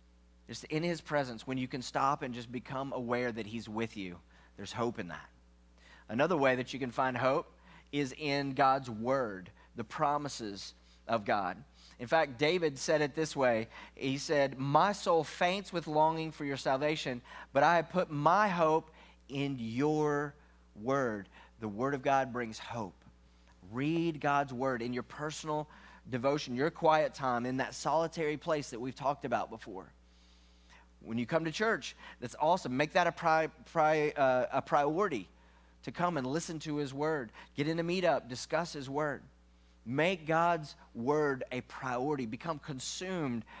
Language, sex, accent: English, male, American